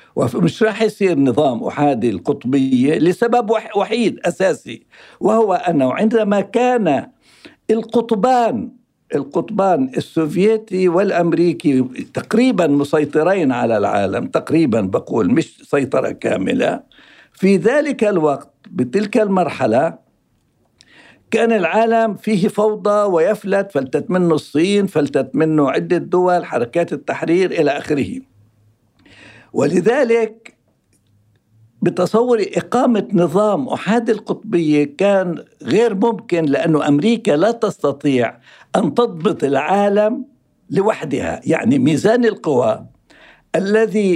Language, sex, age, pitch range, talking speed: Arabic, male, 60-79, 155-225 Hz, 90 wpm